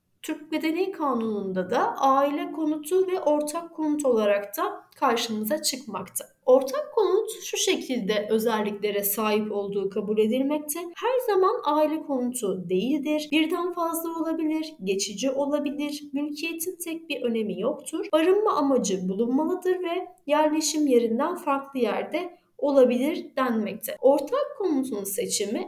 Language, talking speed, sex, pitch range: Turkish, 115 wpm, female, 250-335 Hz